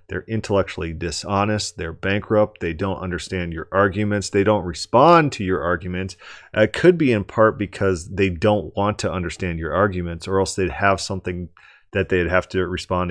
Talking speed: 180 wpm